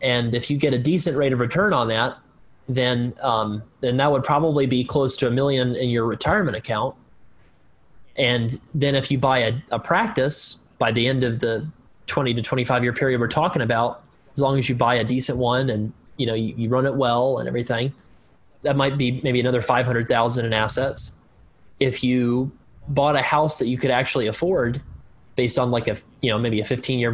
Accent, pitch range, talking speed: American, 115-135 Hz, 205 wpm